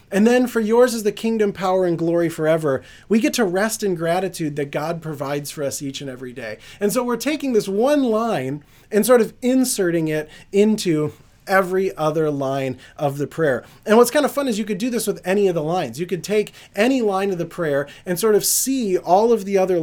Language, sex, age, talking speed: English, male, 30-49, 230 wpm